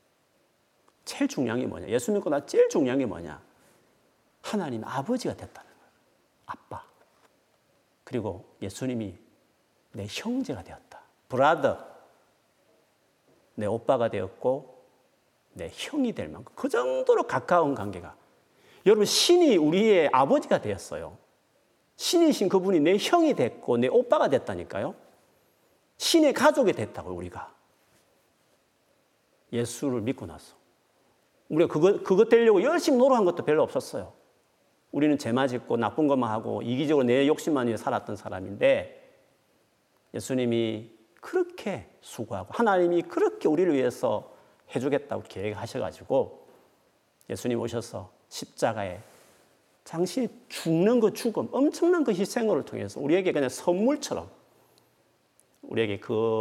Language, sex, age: Korean, male, 40-59